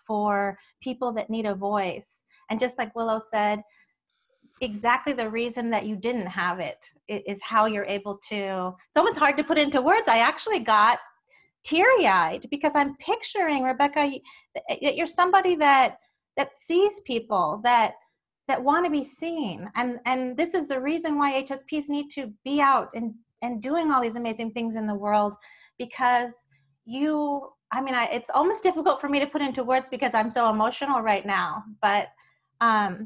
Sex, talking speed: female, 170 wpm